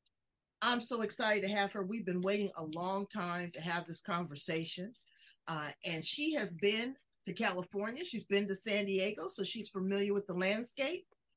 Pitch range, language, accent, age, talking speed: 160-220 Hz, English, American, 40-59, 180 wpm